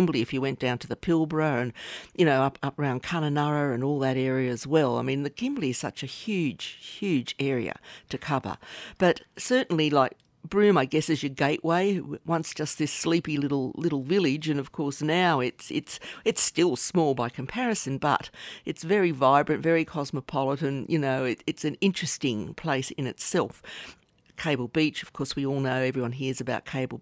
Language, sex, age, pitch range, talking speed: English, female, 50-69, 130-155 Hz, 185 wpm